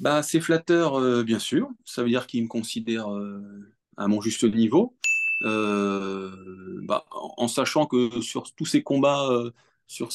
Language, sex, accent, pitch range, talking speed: French, male, French, 110-130 Hz, 165 wpm